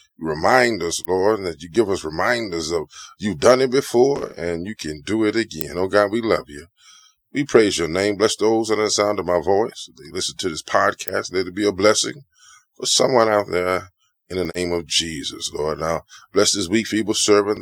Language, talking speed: English, 210 wpm